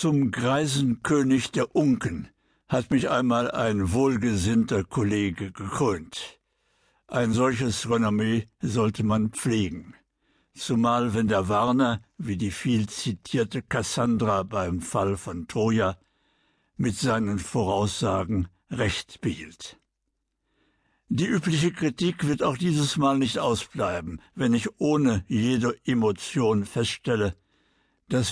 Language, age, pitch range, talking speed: German, 60-79, 110-135 Hz, 110 wpm